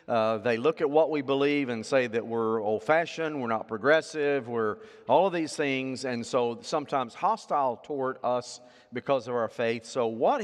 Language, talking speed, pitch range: English, 185 wpm, 120-195 Hz